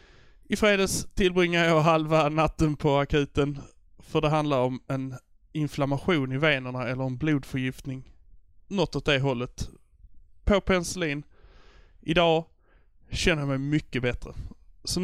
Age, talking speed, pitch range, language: 20-39, 130 wpm, 130-170 Hz, English